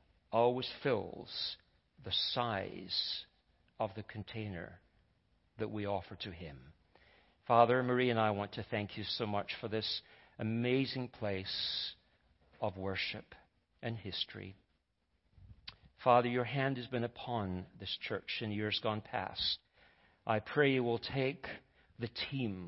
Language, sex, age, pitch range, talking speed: English, male, 50-69, 100-130 Hz, 130 wpm